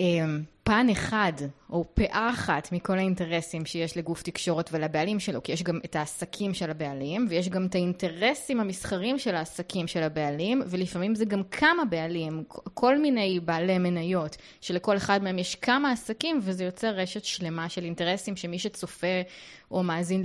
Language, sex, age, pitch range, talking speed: Hebrew, female, 20-39, 180-235 Hz, 155 wpm